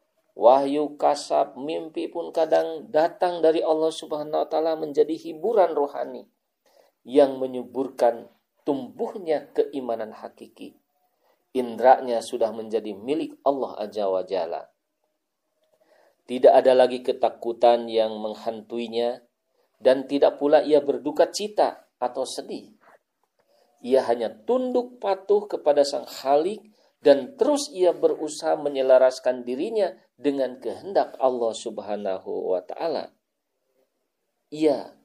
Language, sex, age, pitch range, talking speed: Indonesian, male, 40-59, 125-170 Hz, 100 wpm